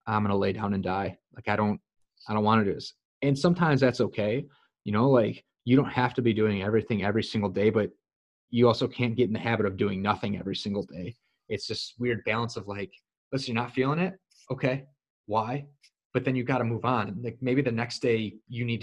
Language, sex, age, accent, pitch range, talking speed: English, male, 30-49, American, 105-130 Hz, 225 wpm